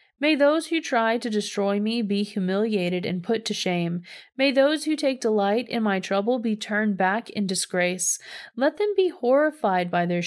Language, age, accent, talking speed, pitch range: English, 30-49, American, 185 wpm, 195-275 Hz